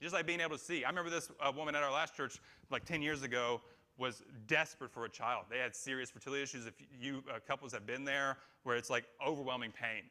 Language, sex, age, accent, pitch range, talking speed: English, male, 30-49, American, 125-160 Hz, 245 wpm